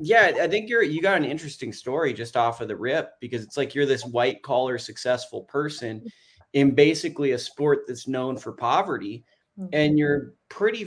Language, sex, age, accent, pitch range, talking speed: English, male, 20-39, American, 125-155 Hz, 190 wpm